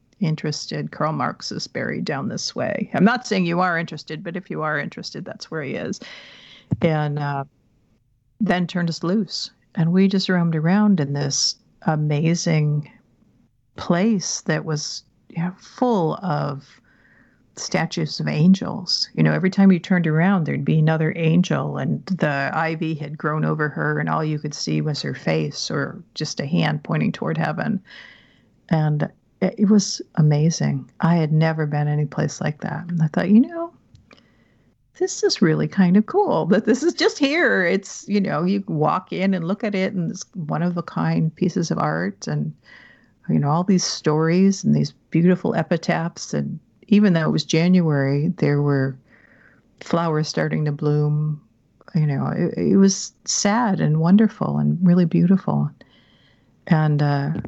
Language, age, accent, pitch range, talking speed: English, 50-69, American, 150-190 Hz, 165 wpm